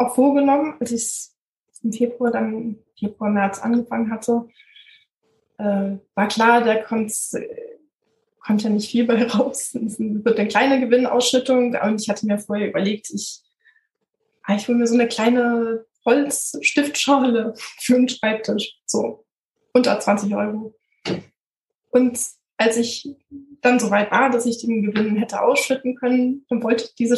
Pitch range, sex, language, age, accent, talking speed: 220-265 Hz, female, German, 20-39, German, 145 wpm